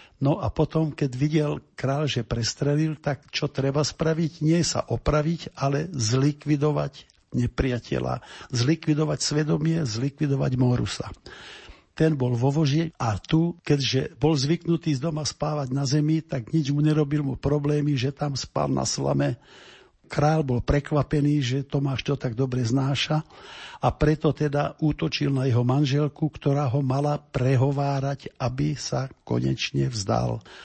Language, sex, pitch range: Slovak, male, 125-150 Hz